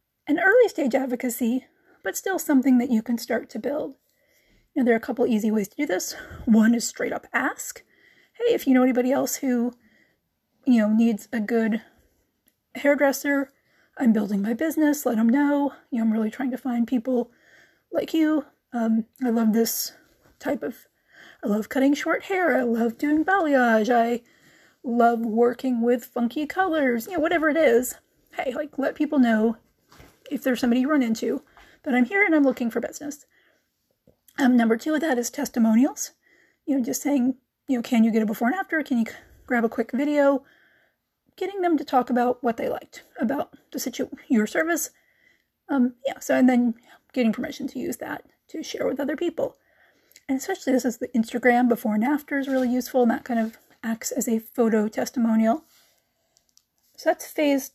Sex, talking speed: female, 190 wpm